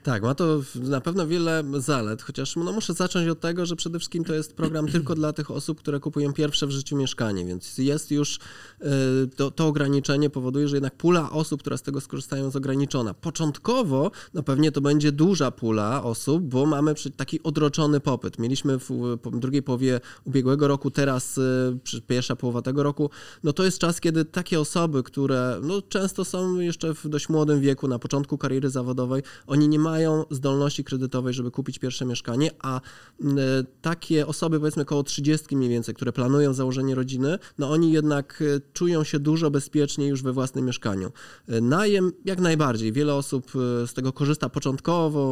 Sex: male